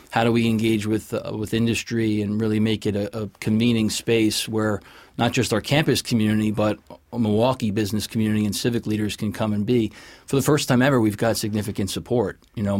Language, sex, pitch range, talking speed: English, male, 105-115 Hz, 210 wpm